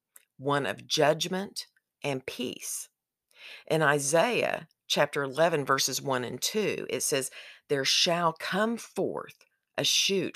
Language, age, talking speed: English, 50-69, 120 wpm